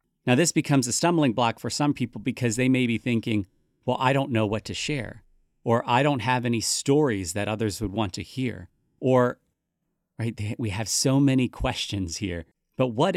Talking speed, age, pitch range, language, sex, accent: 195 wpm, 40-59, 110-135 Hz, English, male, American